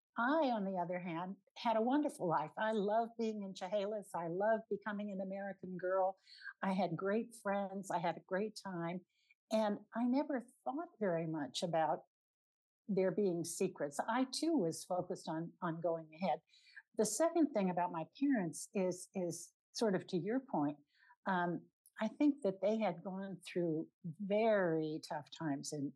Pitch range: 165-215 Hz